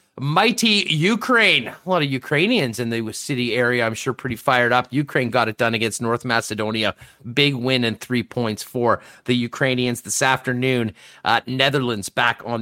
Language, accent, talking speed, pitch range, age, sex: English, American, 170 wpm, 130-160 Hz, 30-49, male